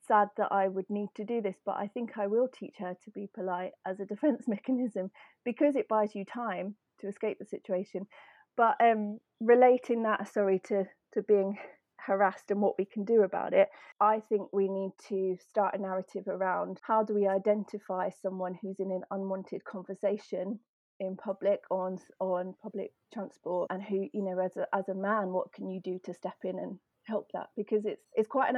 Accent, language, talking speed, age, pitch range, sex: British, English, 205 wpm, 30-49, 190-220 Hz, female